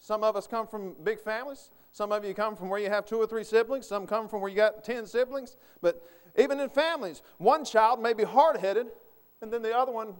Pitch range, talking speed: 160-225 Hz, 240 wpm